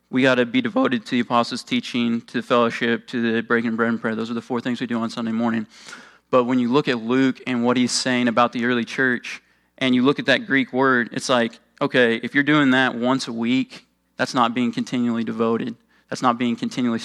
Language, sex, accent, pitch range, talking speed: English, male, American, 120-140 Hz, 245 wpm